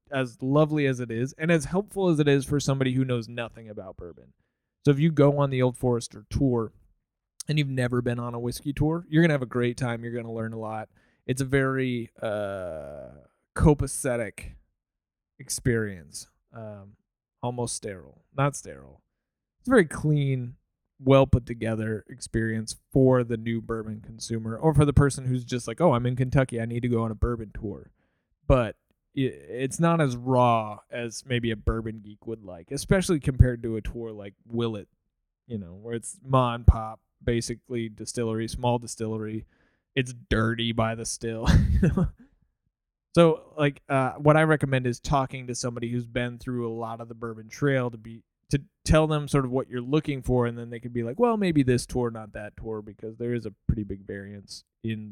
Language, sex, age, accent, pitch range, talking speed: English, male, 30-49, American, 110-135 Hz, 190 wpm